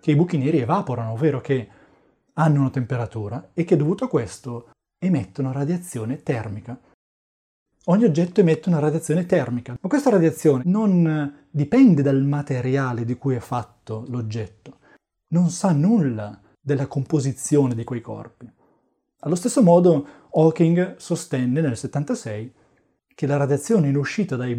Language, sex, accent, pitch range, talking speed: Italian, male, native, 125-165 Hz, 140 wpm